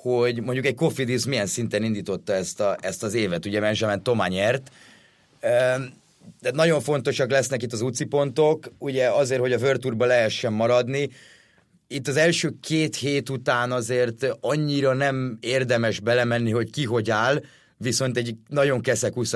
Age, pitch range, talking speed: 30-49, 115-135 Hz, 150 wpm